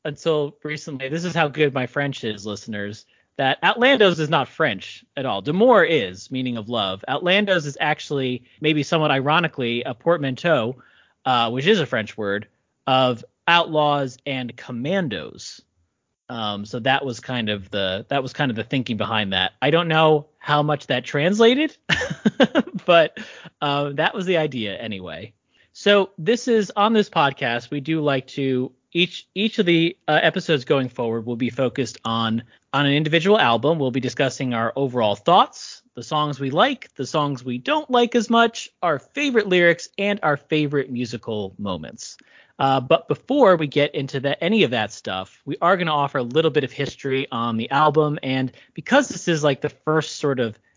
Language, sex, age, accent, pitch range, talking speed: English, male, 30-49, American, 125-170 Hz, 180 wpm